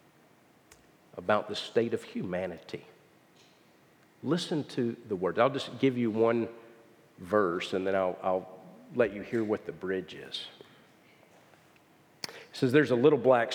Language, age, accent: English, 50-69, American